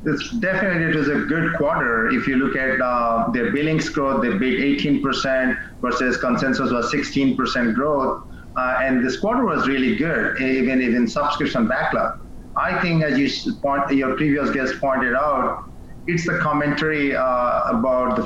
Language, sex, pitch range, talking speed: English, male, 130-155 Hz, 165 wpm